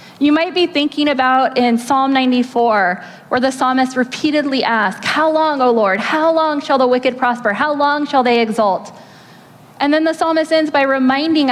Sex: female